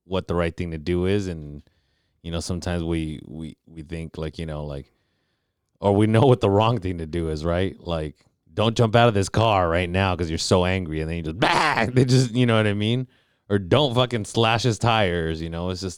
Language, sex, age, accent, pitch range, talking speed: English, male, 30-49, American, 80-100 Hz, 245 wpm